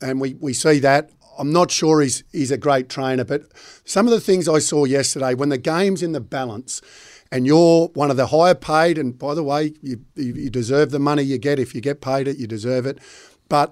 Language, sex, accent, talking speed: English, male, Australian, 235 wpm